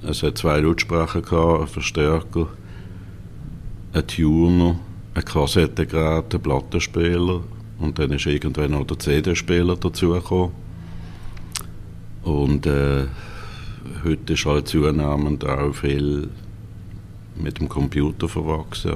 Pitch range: 75-95 Hz